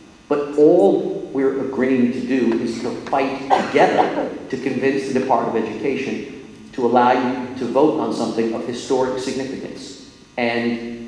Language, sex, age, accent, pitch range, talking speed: English, male, 50-69, American, 120-155 Hz, 145 wpm